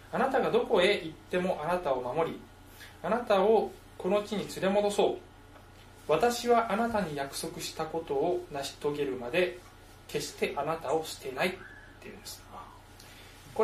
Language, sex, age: Japanese, male, 20-39